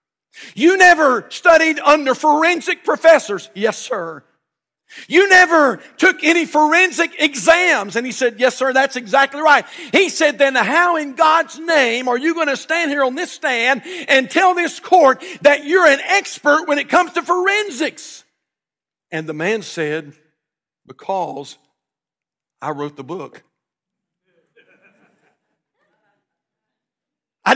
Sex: male